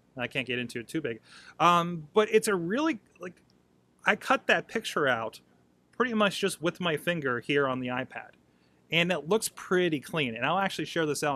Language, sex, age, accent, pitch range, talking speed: English, male, 30-49, American, 115-170 Hz, 205 wpm